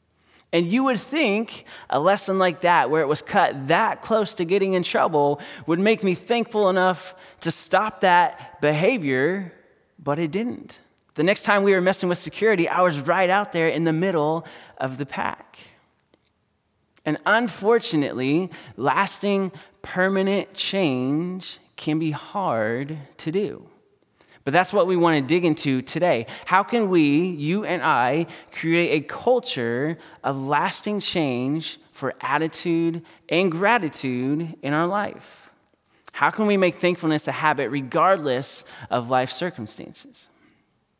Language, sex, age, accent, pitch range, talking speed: English, male, 30-49, American, 150-190 Hz, 145 wpm